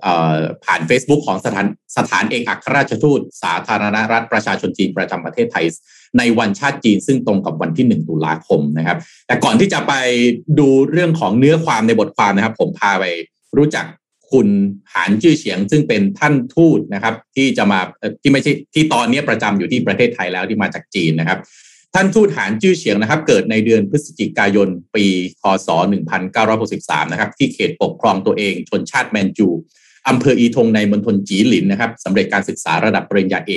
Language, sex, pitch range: Thai, male, 100-155 Hz